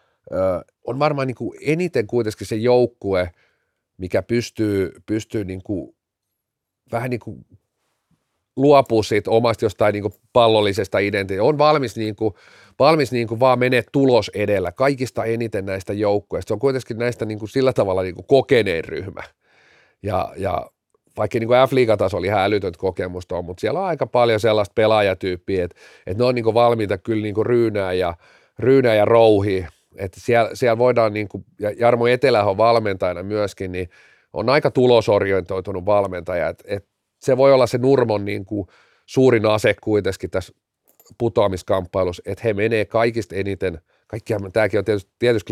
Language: Finnish